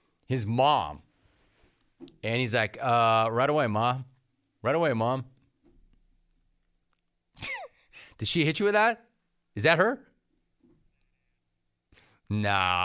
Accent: American